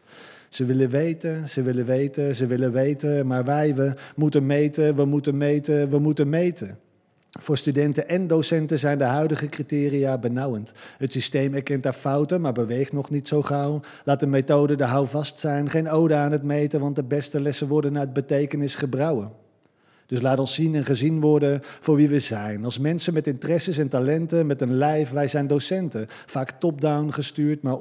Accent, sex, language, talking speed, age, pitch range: Dutch, male, Dutch, 185 wpm, 50-69, 130-150 Hz